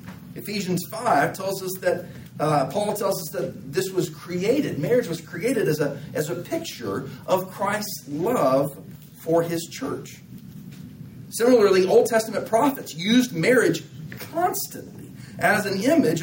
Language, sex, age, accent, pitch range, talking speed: English, male, 40-59, American, 145-195 Hz, 135 wpm